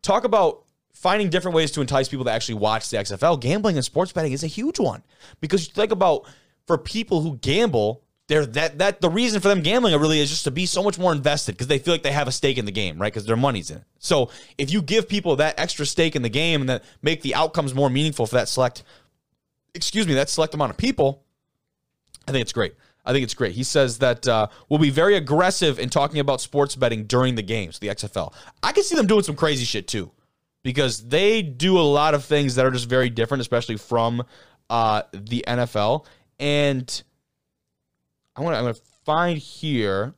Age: 20-39